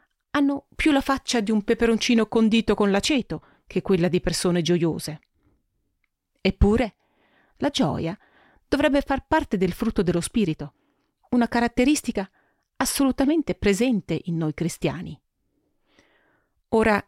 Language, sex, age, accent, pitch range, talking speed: Italian, female, 40-59, native, 175-250 Hz, 115 wpm